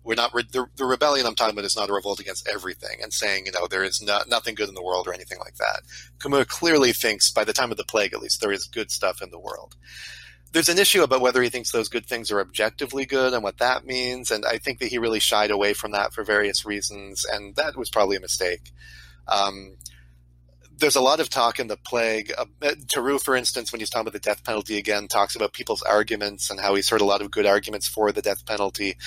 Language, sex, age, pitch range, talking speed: English, male, 30-49, 90-115 Hz, 250 wpm